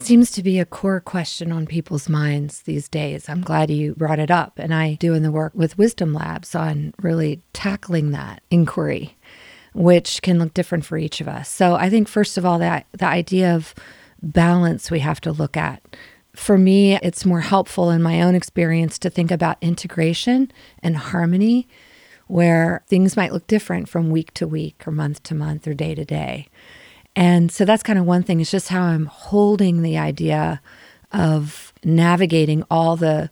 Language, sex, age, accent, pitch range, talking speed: English, female, 40-59, American, 160-180 Hz, 190 wpm